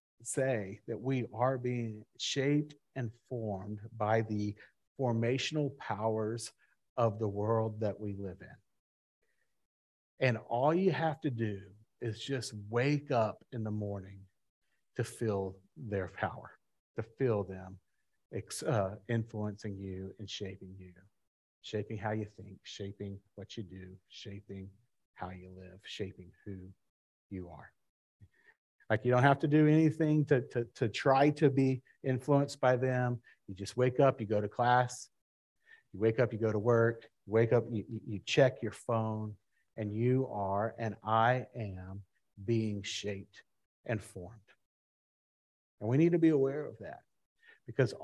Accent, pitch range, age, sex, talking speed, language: American, 100-125 Hz, 50-69, male, 150 wpm, English